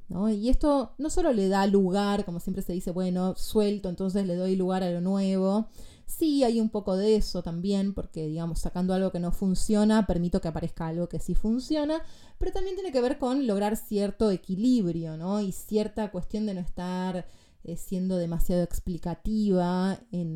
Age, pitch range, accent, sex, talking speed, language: 20-39, 175-235 Hz, Argentinian, female, 185 wpm, Spanish